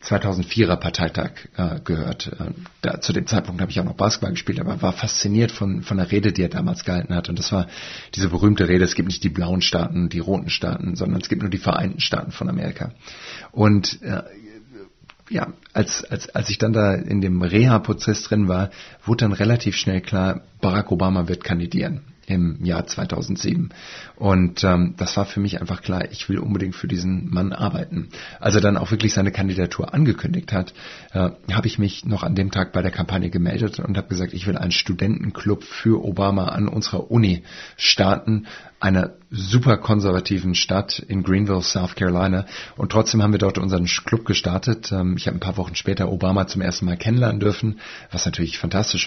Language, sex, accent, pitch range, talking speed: German, male, German, 90-105 Hz, 190 wpm